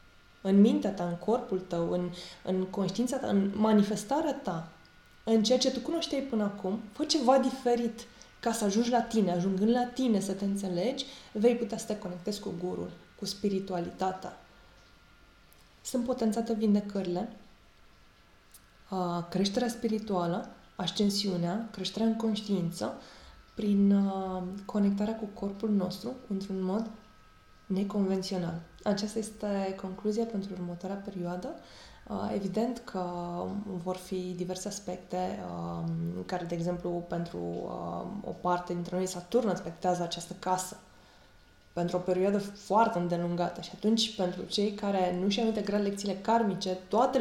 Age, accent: 20-39, native